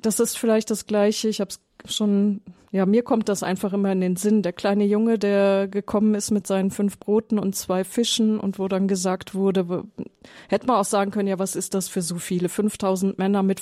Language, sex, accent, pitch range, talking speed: German, female, German, 195-220 Hz, 225 wpm